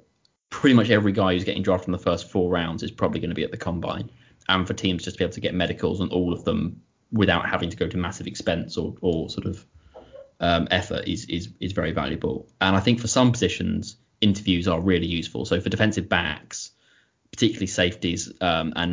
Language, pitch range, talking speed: English, 90-110 Hz, 220 wpm